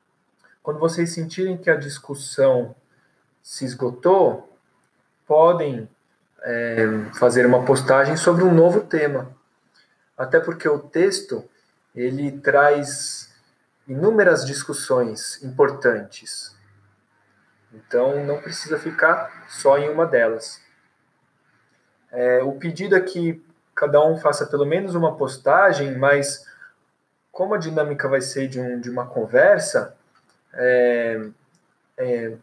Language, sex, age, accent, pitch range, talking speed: Portuguese, male, 20-39, Brazilian, 125-165 Hz, 100 wpm